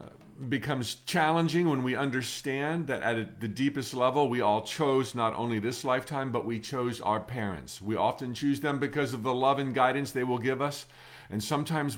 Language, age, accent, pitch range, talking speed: English, 50-69, American, 115-145 Hz, 190 wpm